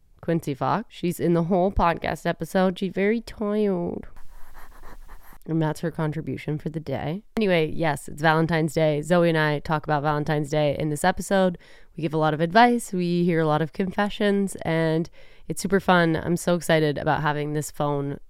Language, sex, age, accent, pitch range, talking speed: English, female, 20-39, American, 155-195 Hz, 185 wpm